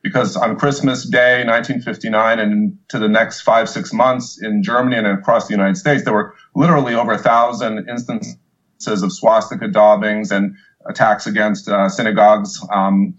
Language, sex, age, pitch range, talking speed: English, male, 40-59, 100-130 Hz, 160 wpm